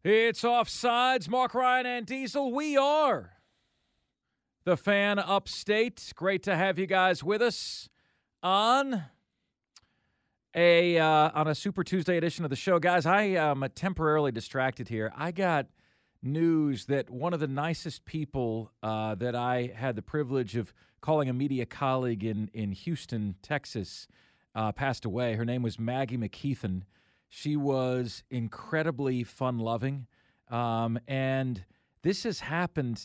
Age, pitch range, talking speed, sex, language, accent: 40-59, 120-160 Hz, 140 wpm, male, English, American